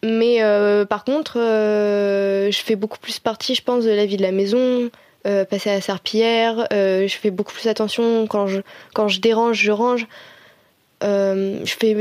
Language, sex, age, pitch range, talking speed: French, female, 20-39, 200-235 Hz, 180 wpm